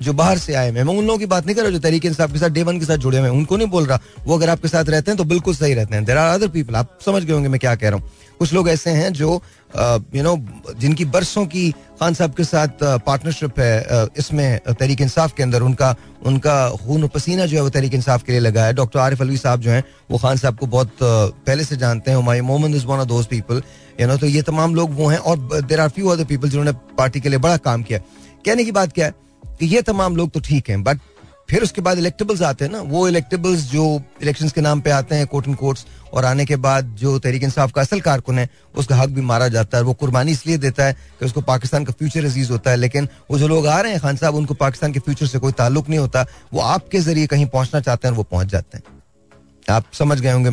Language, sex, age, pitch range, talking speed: Hindi, male, 30-49, 125-160 Hz, 250 wpm